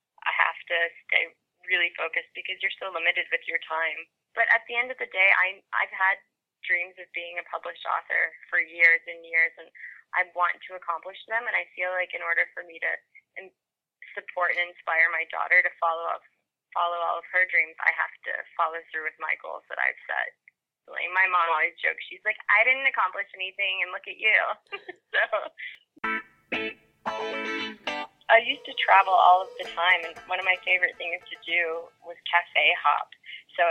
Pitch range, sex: 170-190 Hz, female